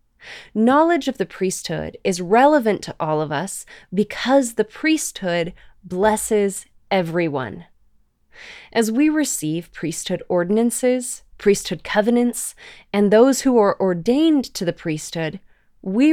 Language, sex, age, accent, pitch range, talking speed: English, female, 20-39, American, 170-230 Hz, 115 wpm